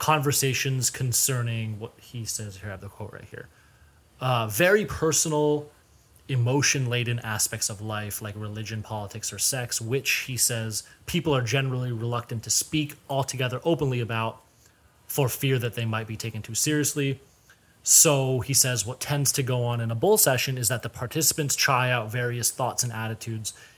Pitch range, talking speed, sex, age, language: 110-140 Hz, 170 wpm, male, 30-49, English